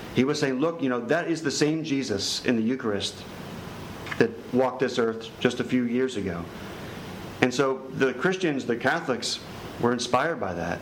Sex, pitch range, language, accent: male, 110-130 Hz, English, American